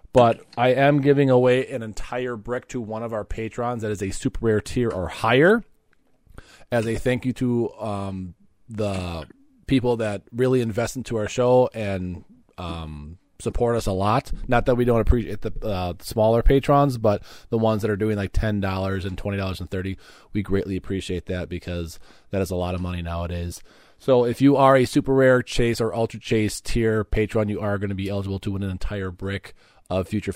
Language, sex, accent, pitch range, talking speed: English, male, American, 100-120 Hz, 200 wpm